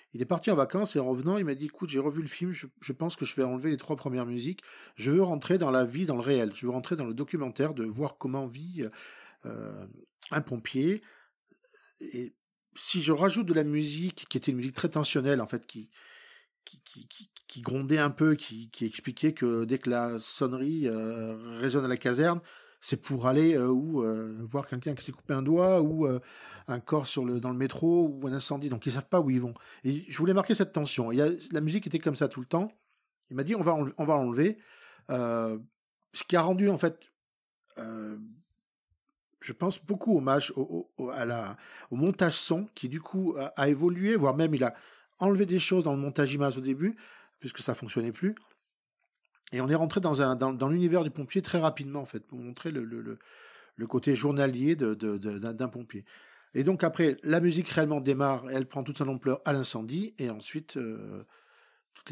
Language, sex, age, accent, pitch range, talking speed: French, male, 40-59, French, 125-165 Hz, 225 wpm